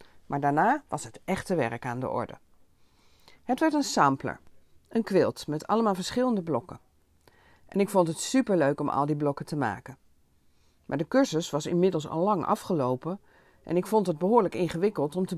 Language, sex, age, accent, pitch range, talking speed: Dutch, female, 40-59, Dutch, 145-200 Hz, 180 wpm